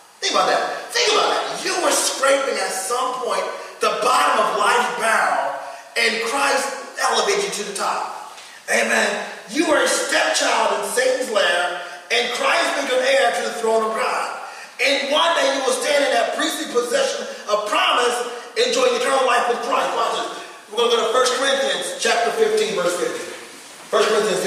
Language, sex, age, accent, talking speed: English, male, 30-49, American, 180 wpm